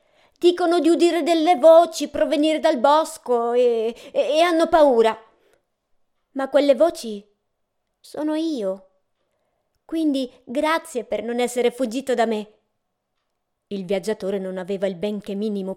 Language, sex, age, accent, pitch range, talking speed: Italian, female, 20-39, native, 205-300 Hz, 125 wpm